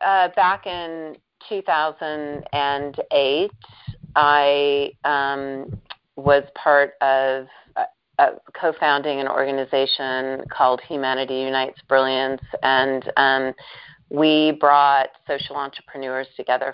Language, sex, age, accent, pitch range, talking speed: English, female, 30-49, American, 135-150 Hz, 80 wpm